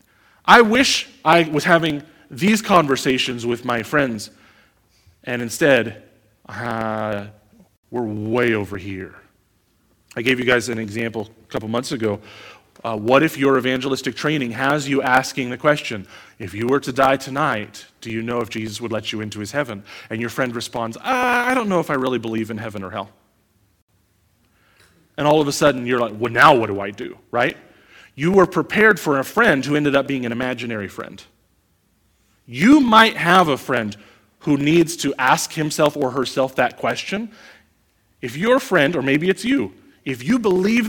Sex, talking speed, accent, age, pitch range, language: male, 180 wpm, American, 30-49, 110-170 Hz, English